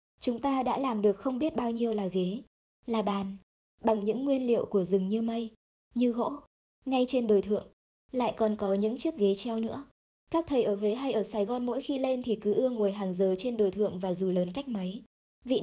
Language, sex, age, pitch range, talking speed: Vietnamese, male, 20-39, 205-250 Hz, 235 wpm